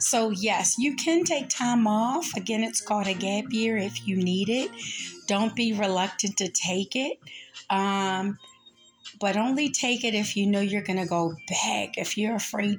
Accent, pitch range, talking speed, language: American, 180-205 Hz, 185 wpm, English